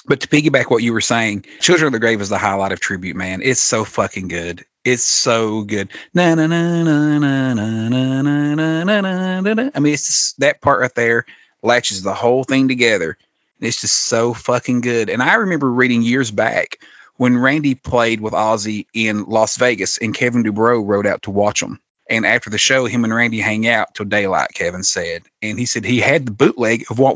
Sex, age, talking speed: male, 30-49, 190 wpm